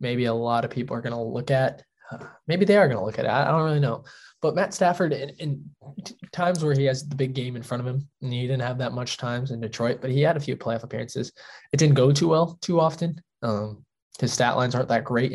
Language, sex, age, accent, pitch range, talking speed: English, male, 10-29, American, 120-145 Hz, 265 wpm